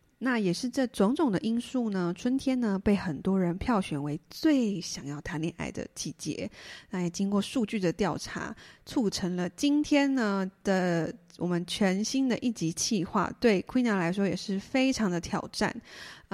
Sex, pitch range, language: female, 180-235 Hz, Chinese